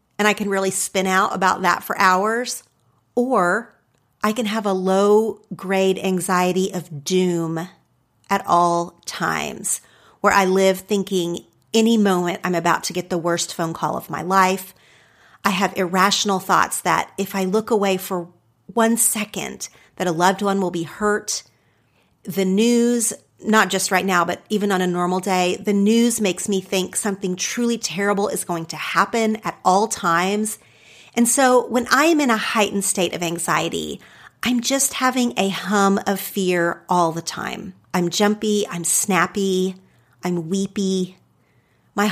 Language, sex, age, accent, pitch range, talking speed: English, female, 40-59, American, 180-210 Hz, 160 wpm